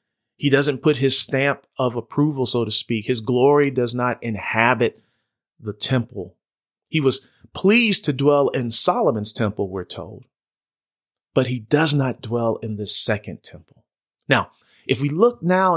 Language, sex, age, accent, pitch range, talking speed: English, male, 30-49, American, 115-145 Hz, 155 wpm